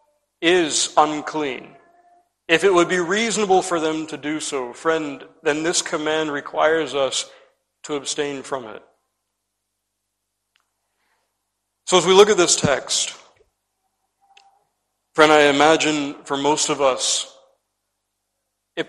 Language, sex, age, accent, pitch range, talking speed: English, male, 40-59, American, 140-170 Hz, 120 wpm